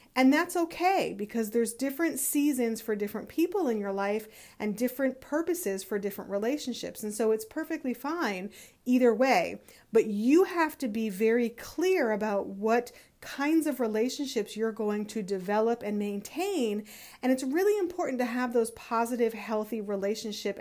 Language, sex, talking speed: English, female, 155 wpm